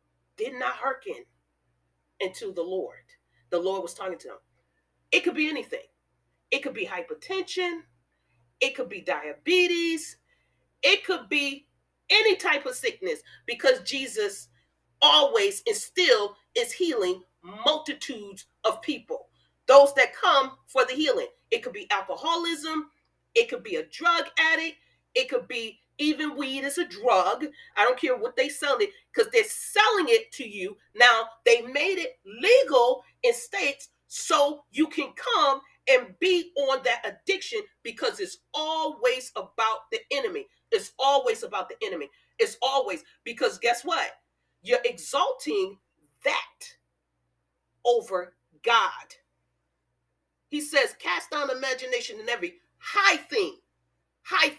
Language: English